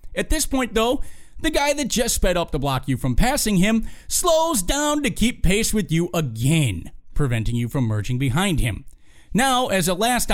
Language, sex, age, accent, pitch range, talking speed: English, male, 40-59, American, 135-200 Hz, 195 wpm